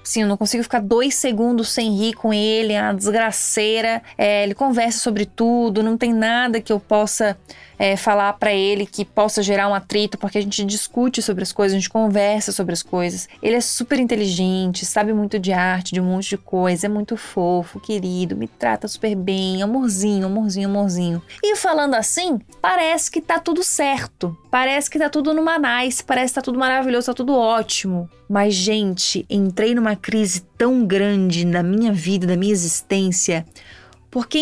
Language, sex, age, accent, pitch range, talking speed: Portuguese, female, 20-39, Brazilian, 205-265 Hz, 185 wpm